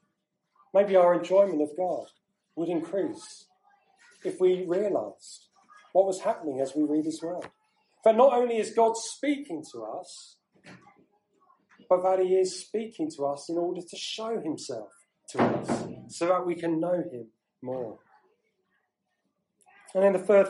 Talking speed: 150 wpm